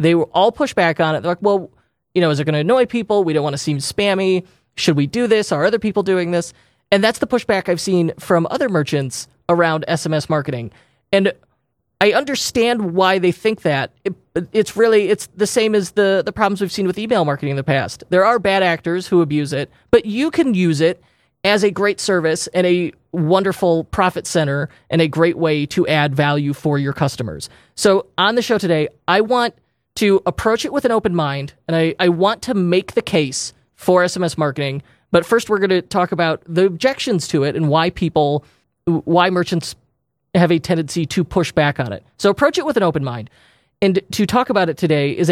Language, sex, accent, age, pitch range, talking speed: English, male, American, 30-49, 150-195 Hz, 215 wpm